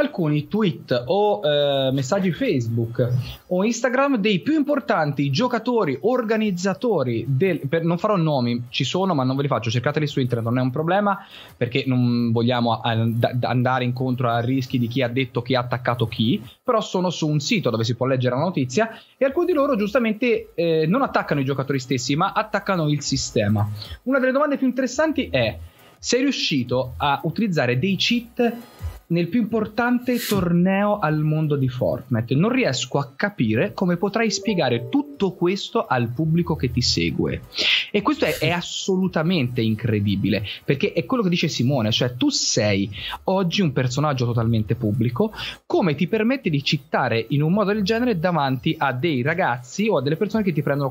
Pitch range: 125-205 Hz